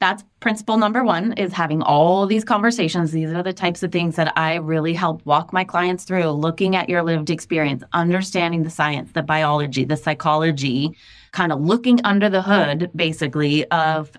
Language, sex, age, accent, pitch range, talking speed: English, female, 20-39, American, 155-210 Hz, 180 wpm